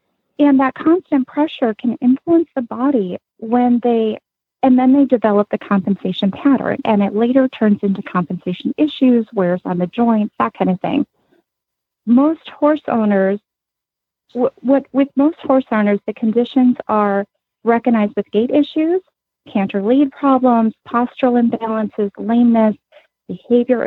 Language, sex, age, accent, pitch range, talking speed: English, female, 30-49, American, 205-270 Hz, 140 wpm